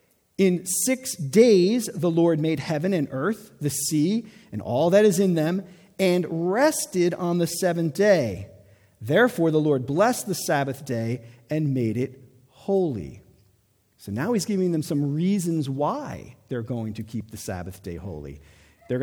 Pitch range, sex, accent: 130-180 Hz, male, American